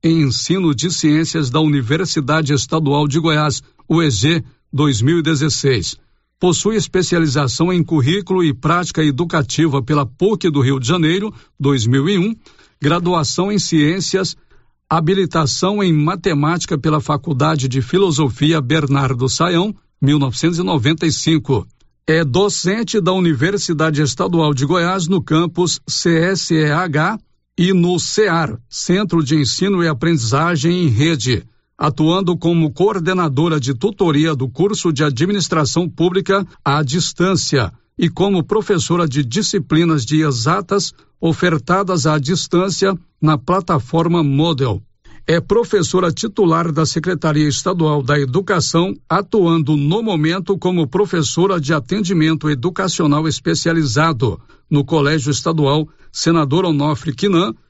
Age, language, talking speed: 60-79, Portuguese, 110 wpm